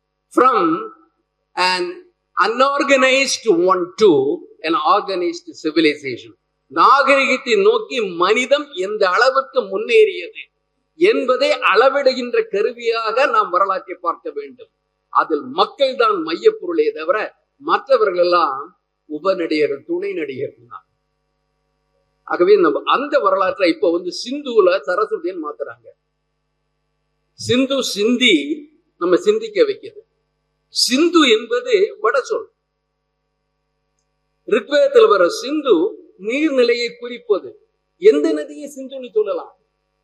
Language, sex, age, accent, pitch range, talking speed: Tamil, male, 50-69, native, 260-430 Hz, 80 wpm